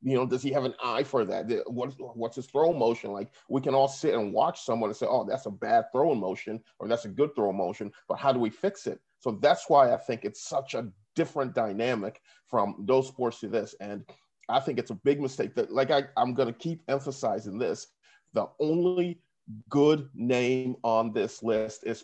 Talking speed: 215 wpm